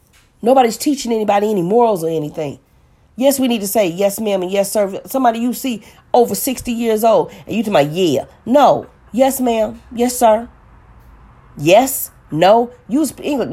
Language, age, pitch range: English, 40-59, 140-230 Hz